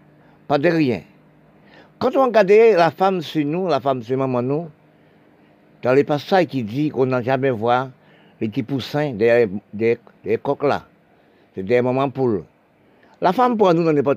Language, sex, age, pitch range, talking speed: French, male, 60-79, 125-165 Hz, 180 wpm